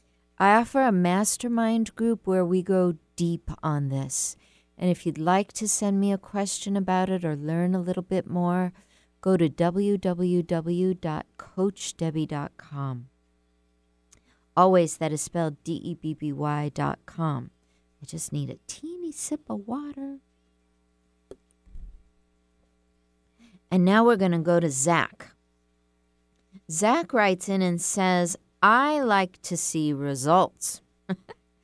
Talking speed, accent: 120 wpm, American